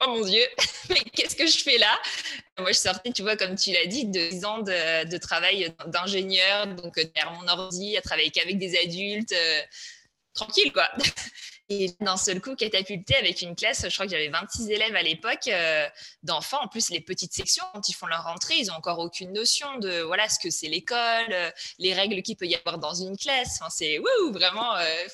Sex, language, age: female, French, 20-39